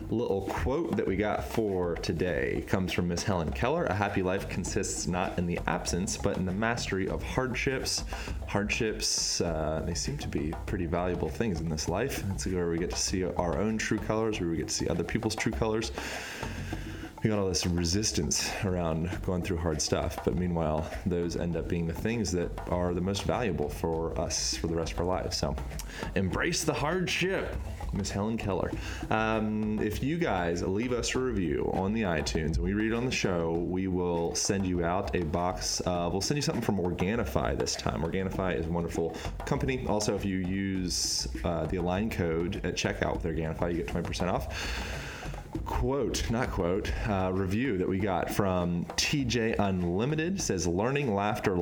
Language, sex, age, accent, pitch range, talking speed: English, male, 20-39, American, 85-110 Hz, 190 wpm